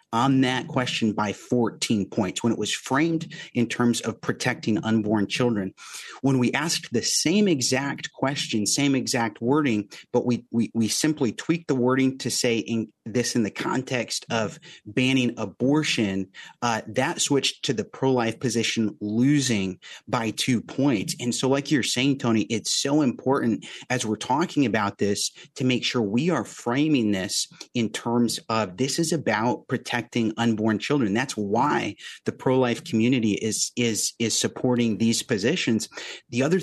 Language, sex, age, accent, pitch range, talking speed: English, male, 30-49, American, 110-135 Hz, 160 wpm